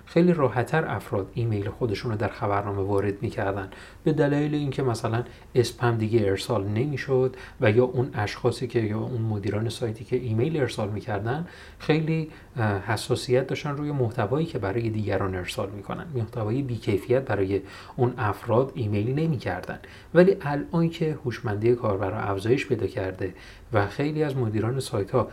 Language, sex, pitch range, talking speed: Persian, male, 100-130 Hz, 155 wpm